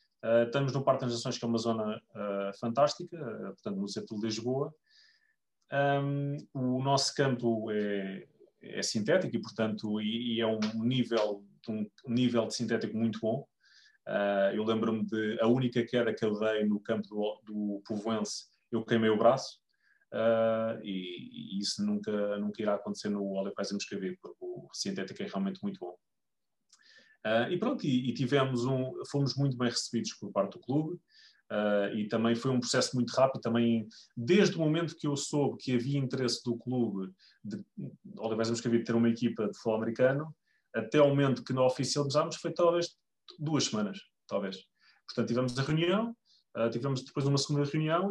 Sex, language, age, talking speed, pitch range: male, English, 30-49, 180 wpm, 110-140 Hz